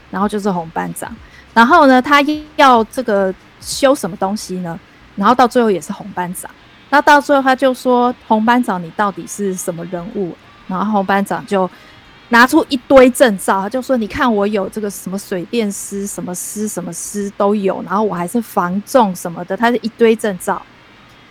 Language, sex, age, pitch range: Chinese, female, 20-39, 190-240 Hz